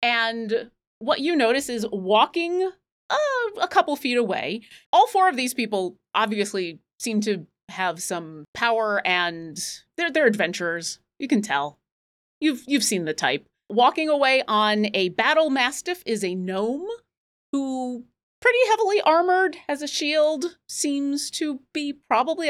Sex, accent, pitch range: female, American, 195-300 Hz